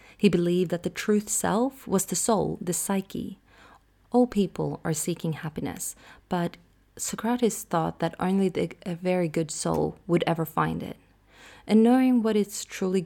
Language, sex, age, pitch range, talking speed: English, female, 30-49, 165-195 Hz, 155 wpm